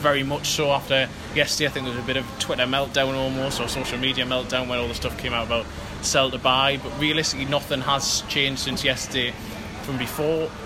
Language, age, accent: English, 20-39, British